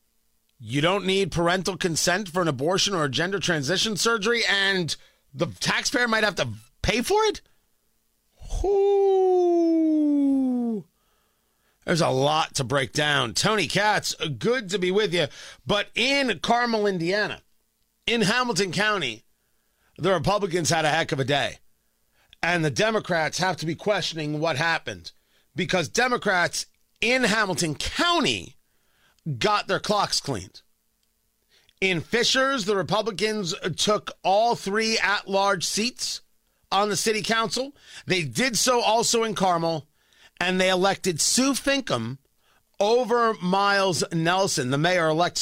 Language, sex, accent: English, male, American